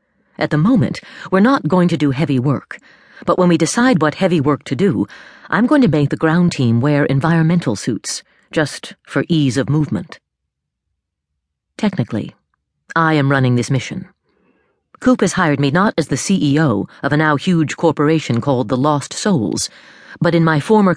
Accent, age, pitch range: American, 40-59, 135-180 Hz